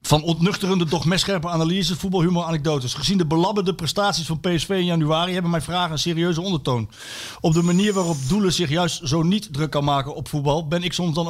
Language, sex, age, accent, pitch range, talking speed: Dutch, male, 60-79, Dutch, 150-185 Hz, 205 wpm